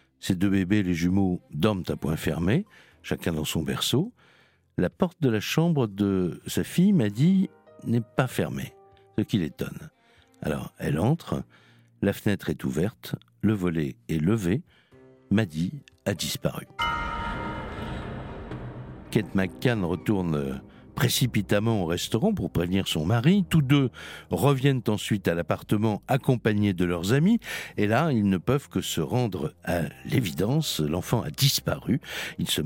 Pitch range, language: 90-130 Hz, French